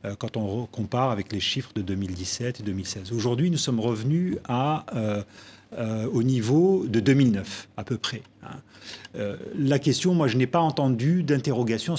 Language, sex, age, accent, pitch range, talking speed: French, male, 40-59, French, 110-130 Hz, 170 wpm